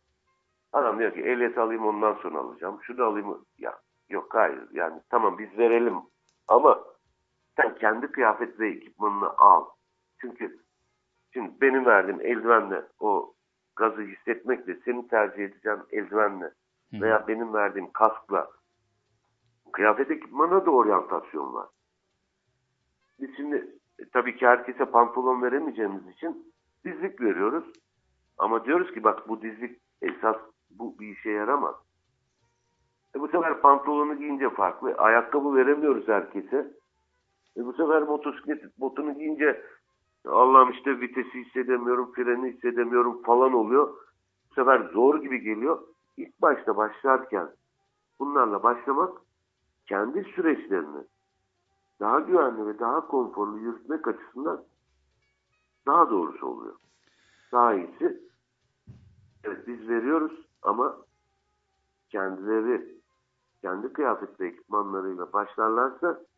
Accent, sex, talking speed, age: Turkish, male, 110 wpm, 60-79